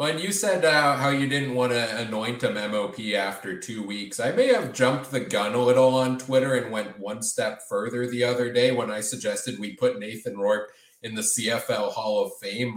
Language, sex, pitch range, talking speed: English, male, 110-145 Hz, 215 wpm